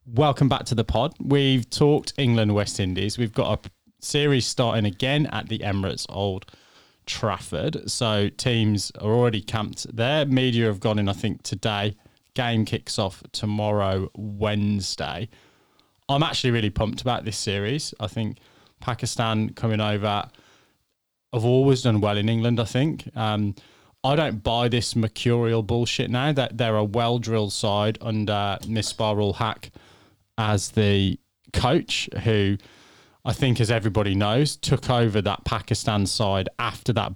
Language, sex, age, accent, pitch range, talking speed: English, male, 20-39, British, 105-125 Hz, 150 wpm